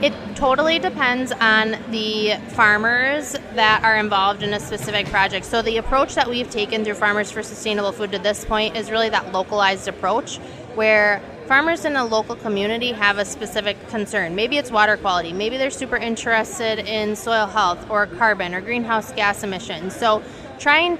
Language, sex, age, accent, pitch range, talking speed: English, female, 20-39, American, 210-245 Hz, 175 wpm